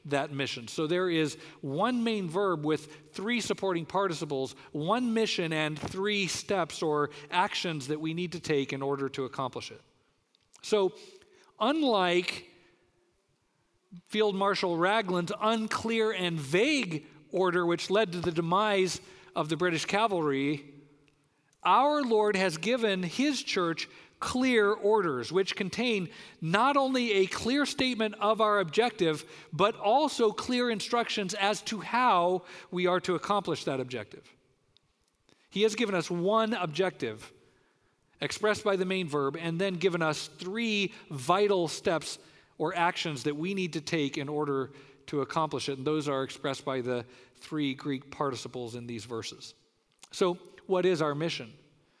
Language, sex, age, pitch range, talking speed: English, male, 50-69, 150-210 Hz, 145 wpm